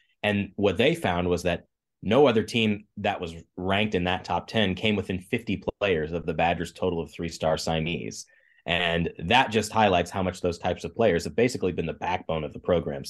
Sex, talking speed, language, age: male, 210 wpm, English, 30-49